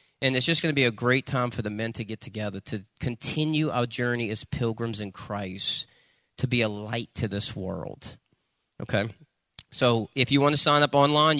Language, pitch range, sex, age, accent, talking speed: English, 115-140 Hz, male, 30-49, American, 205 wpm